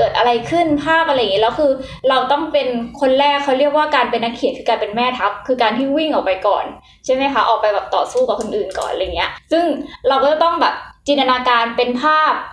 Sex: female